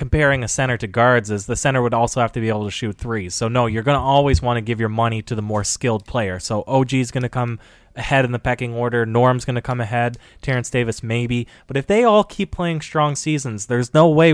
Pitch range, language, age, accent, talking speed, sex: 115-135 Hz, English, 20-39, American, 265 wpm, male